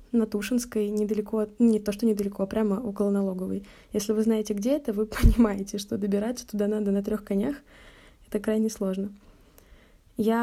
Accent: native